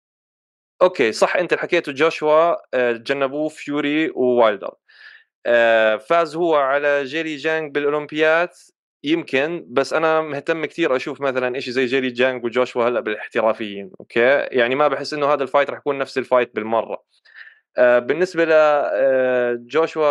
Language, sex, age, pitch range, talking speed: Arabic, male, 20-39, 125-155 Hz, 130 wpm